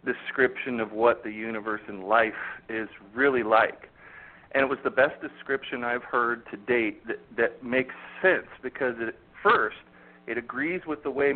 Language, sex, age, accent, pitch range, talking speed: English, male, 40-59, American, 125-160 Hz, 170 wpm